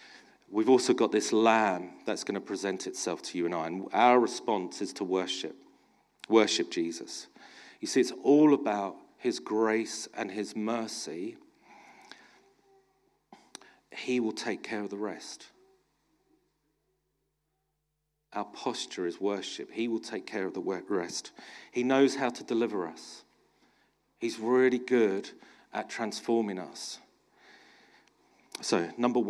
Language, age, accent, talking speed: English, 40-59, British, 130 wpm